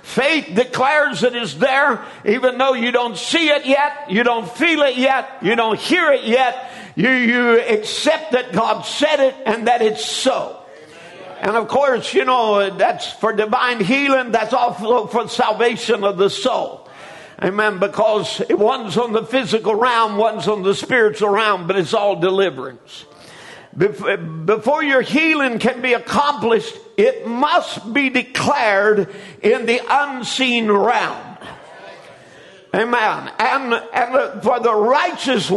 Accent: American